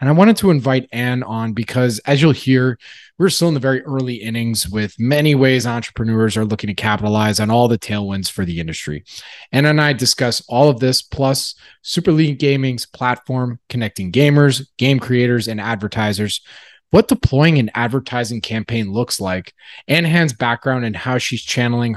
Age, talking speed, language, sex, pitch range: 20-39, 175 wpm, English, male, 105-135 Hz